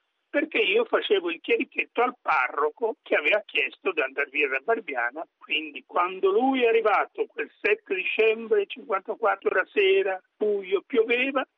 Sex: male